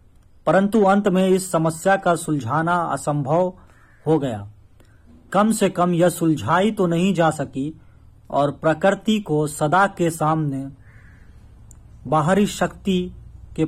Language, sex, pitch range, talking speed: Hindi, male, 130-180 Hz, 125 wpm